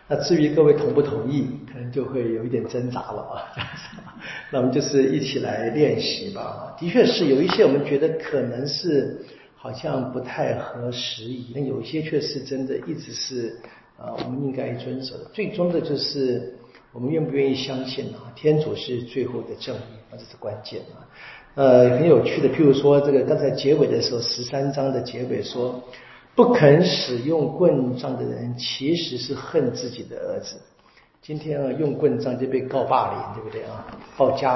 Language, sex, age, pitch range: Chinese, male, 50-69, 125-160 Hz